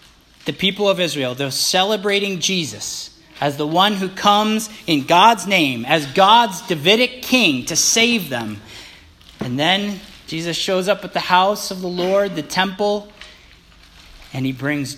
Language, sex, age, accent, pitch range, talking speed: English, male, 40-59, American, 125-175 Hz, 150 wpm